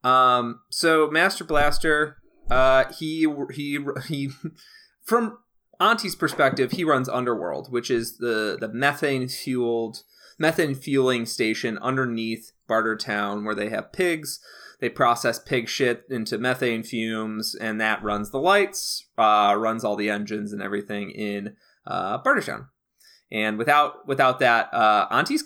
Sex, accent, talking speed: male, American, 135 wpm